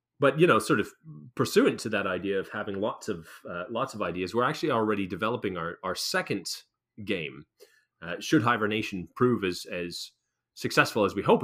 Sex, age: male, 30-49